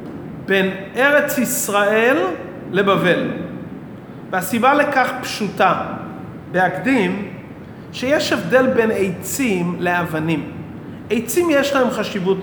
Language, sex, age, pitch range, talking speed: Hebrew, male, 40-59, 185-260 Hz, 80 wpm